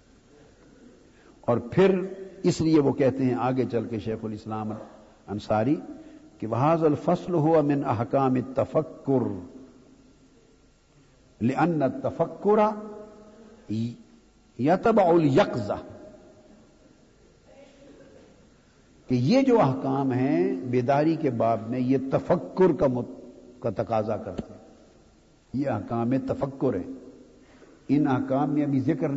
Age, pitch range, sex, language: 60-79, 125-155 Hz, male, Urdu